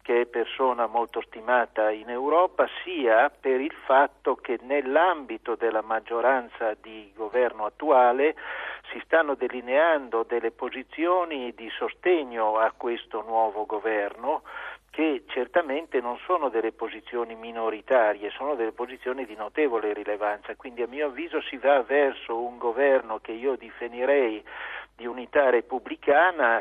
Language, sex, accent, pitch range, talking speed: Italian, male, native, 115-150 Hz, 130 wpm